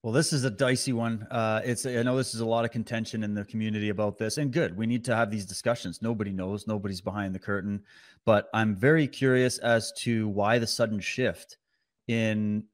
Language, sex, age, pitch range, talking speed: English, male, 30-49, 100-115 Hz, 215 wpm